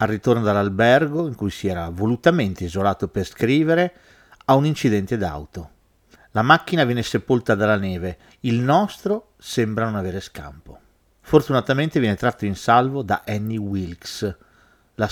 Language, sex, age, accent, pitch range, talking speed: Italian, male, 40-59, native, 100-125 Hz, 145 wpm